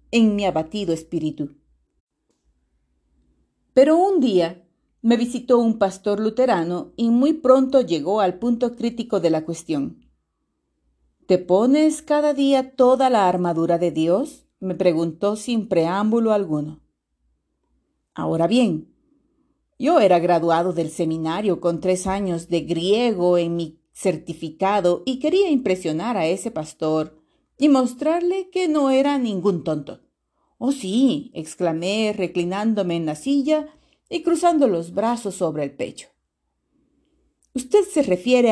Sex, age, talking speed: female, 40-59, 125 wpm